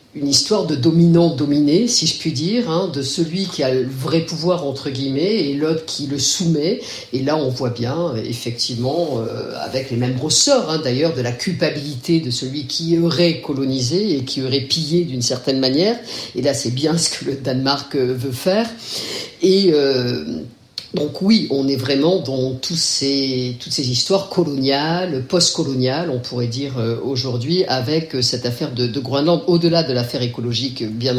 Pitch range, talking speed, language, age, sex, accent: 130-170 Hz, 175 wpm, French, 50-69, female, French